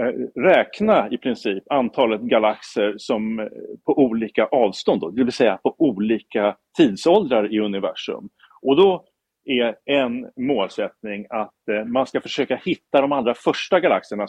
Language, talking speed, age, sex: Swedish, 135 wpm, 40-59, male